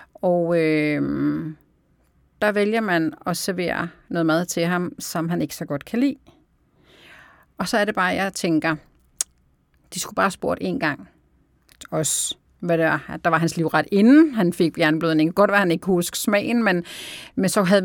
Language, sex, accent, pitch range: Danish, female, native, 165-205 Hz